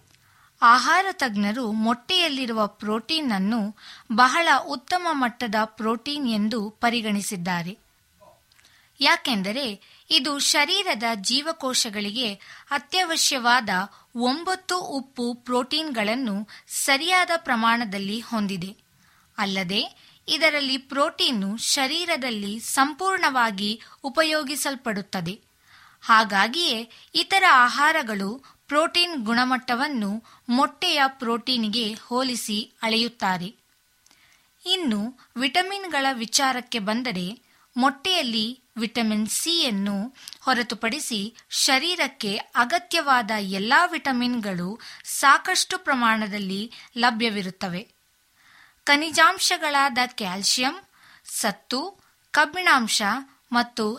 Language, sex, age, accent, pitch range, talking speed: Kannada, female, 20-39, native, 215-290 Hz, 65 wpm